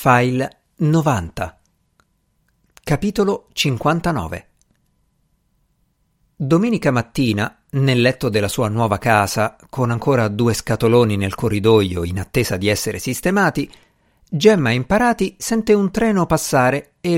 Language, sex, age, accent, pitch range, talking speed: Italian, male, 50-69, native, 110-160 Hz, 105 wpm